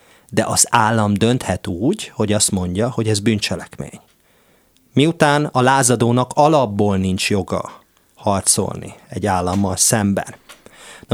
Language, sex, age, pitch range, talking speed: Hungarian, male, 30-49, 95-120 Hz, 120 wpm